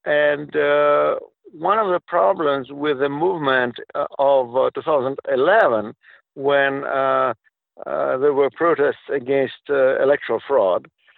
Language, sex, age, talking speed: English, male, 60-79, 125 wpm